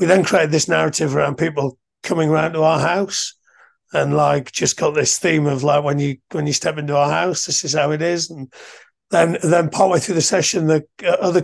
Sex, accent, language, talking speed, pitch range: male, British, English, 220 wpm, 150-175 Hz